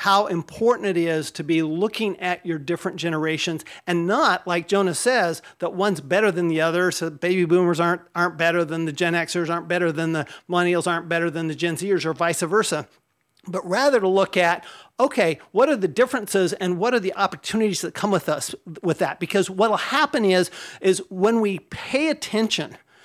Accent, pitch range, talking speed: American, 170-205 Hz, 200 wpm